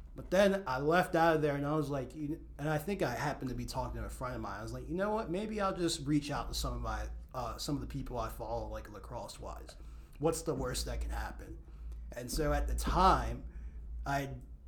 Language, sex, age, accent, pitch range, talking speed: English, male, 30-49, American, 110-145 Hz, 250 wpm